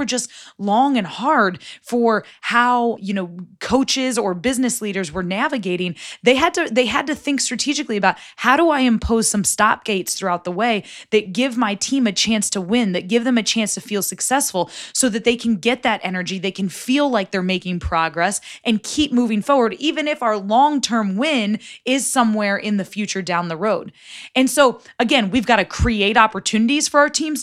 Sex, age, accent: female, 20-39, American